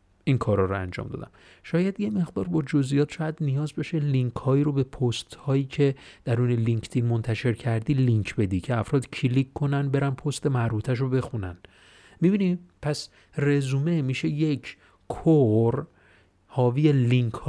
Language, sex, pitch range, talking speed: Persian, male, 115-145 Hz, 150 wpm